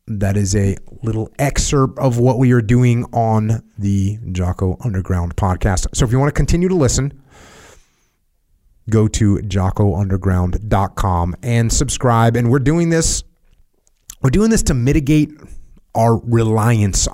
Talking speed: 135 wpm